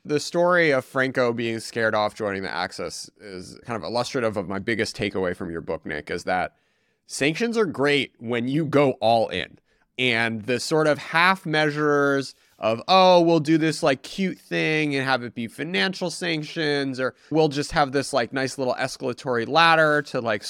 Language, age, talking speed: English, 30-49, 185 wpm